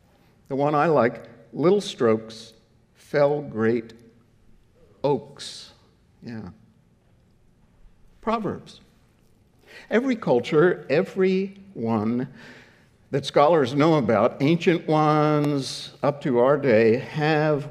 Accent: American